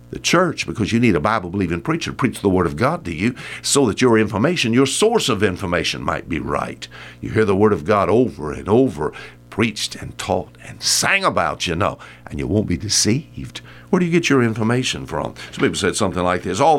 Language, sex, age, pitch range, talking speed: English, male, 60-79, 85-140 Hz, 225 wpm